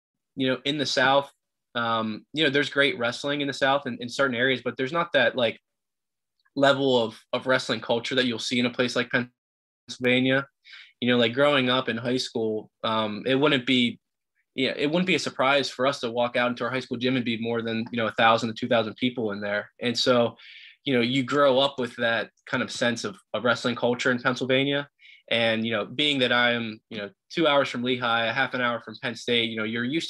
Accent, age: American, 20-39